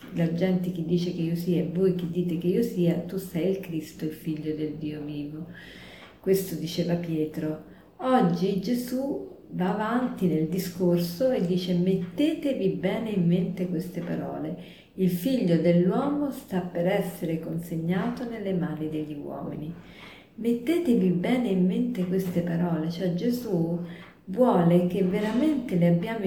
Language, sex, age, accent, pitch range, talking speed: Italian, female, 40-59, native, 170-225 Hz, 145 wpm